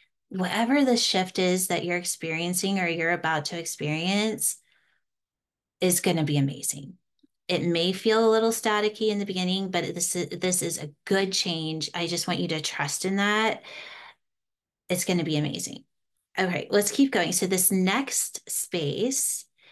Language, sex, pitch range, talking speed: English, female, 175-220 Hz, 165 wpm